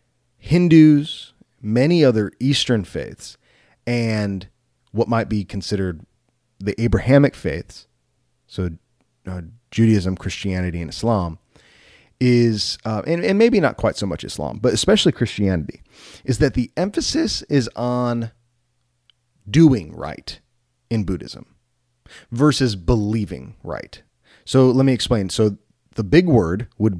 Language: English